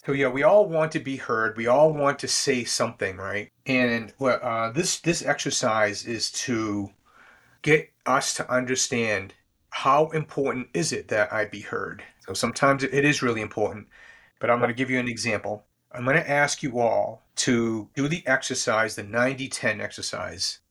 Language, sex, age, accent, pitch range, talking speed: English, male, 40-59, American, 110-135 Hz, 185 wpm